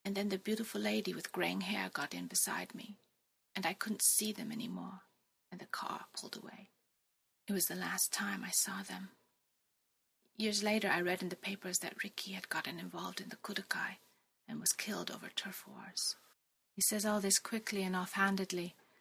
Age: 30-49